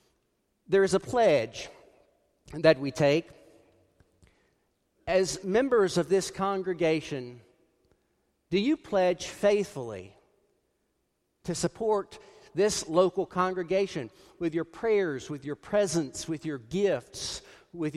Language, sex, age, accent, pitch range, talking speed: English, male, 50-69, American, 130-195 Hz, 105 wpm